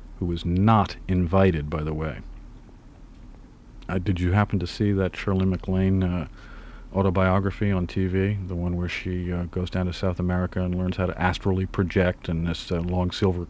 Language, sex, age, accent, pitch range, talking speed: English, male, 50-69, American, 90-105 Hz, 180 wpm